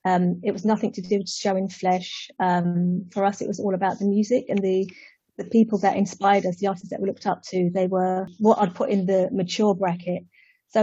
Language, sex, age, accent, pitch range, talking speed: English, female, 30-49, British, 185-215 Hz, 235 wpm